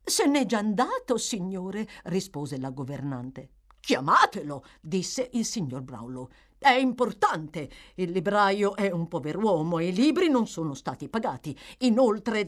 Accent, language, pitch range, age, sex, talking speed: native, Italian, 155-255 Hz, 50-69, female, 140 wpm